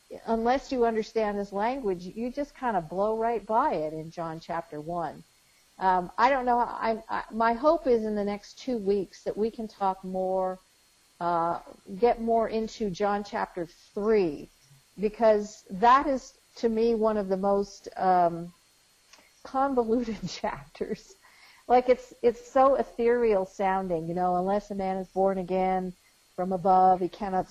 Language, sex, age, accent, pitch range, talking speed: English, female, 50-69, American, 175-220 Hz, 155 wpm